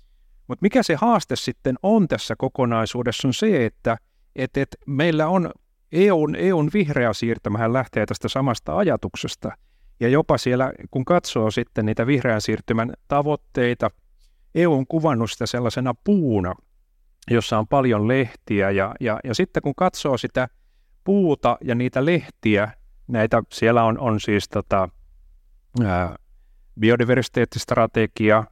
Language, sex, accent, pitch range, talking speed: Finnish, male, native, 100-130 Hz, 130 wpm